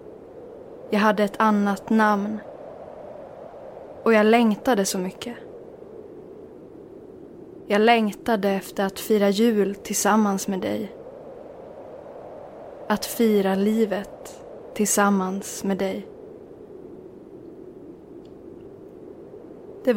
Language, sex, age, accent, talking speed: Swedish, female, 20-39, native, 80 wpm